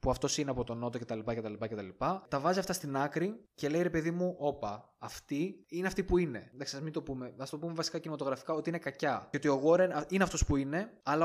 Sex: male